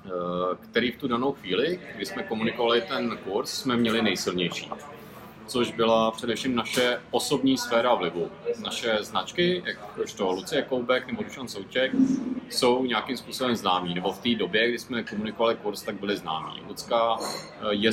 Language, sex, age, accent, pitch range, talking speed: Czech, male, 40-59, Slovak, 105-130 Hz, 155 wpm